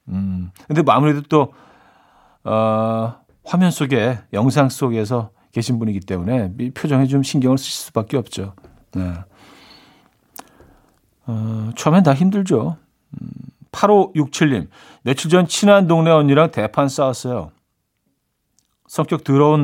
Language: Korean